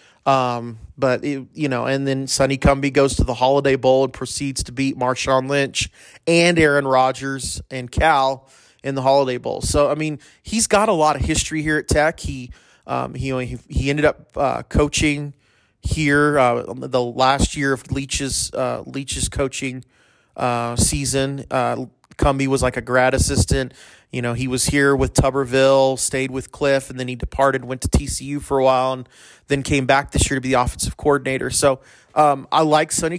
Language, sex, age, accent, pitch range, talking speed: English, male, 30-49, American, 130-145 Hz, 190 wpm